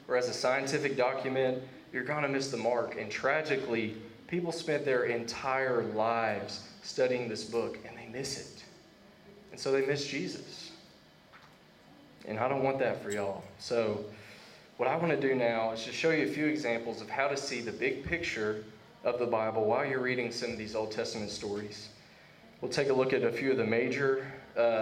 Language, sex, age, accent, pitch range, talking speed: English, male, 20-39, American, 105-130 Hz, 195 wpm